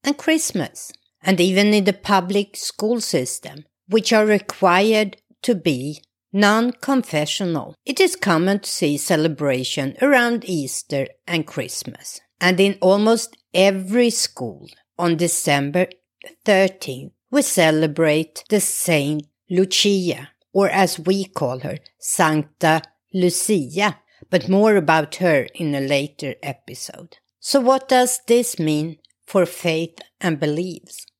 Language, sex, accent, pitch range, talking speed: English, female, Swedish, 150-205 Hz, 120 wpm